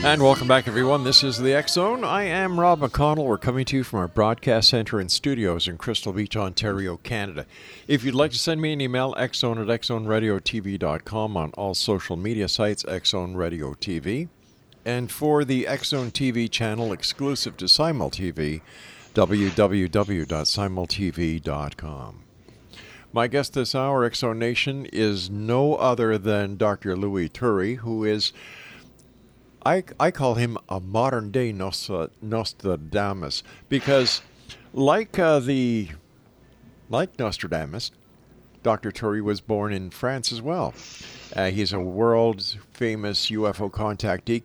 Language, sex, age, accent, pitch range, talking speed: English, male, 50-69, American, 100-130 Hz, 140 wpm